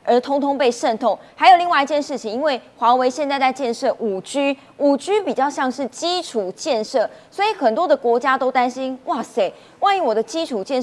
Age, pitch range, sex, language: 20-39, 230-320 Hz, female, Chinese